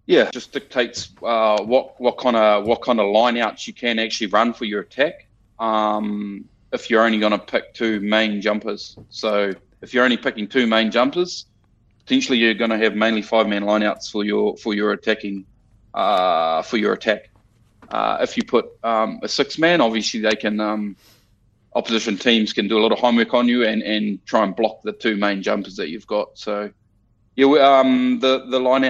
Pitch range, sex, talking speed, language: 105-120 Hz, male, 195 wpm, English